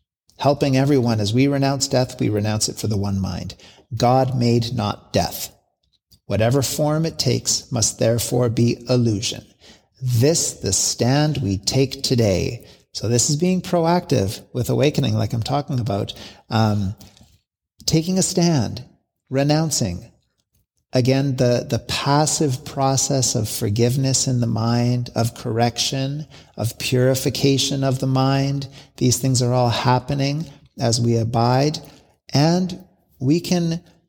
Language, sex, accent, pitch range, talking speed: English, male, American, 115-140 Hz, 130 wpm